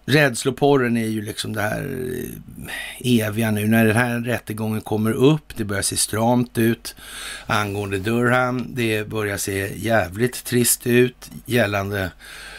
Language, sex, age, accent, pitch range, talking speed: Swedish, male, 60-79, native, 100-120 Hz, 135 wpm